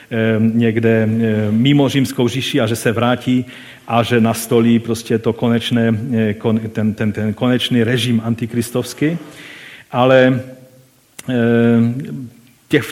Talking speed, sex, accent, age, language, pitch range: 100 wpm, male, native, 40-59, Czech, 115-150 Hz